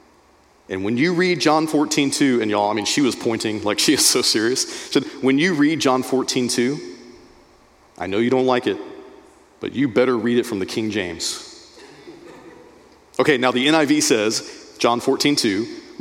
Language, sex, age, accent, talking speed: English, male, 40-59, American, 175 wpm